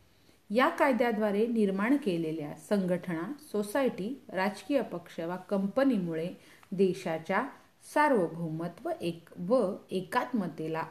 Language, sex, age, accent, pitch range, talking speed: Hindi, female, 40-59, native, 180-245 Hz, 95 wpm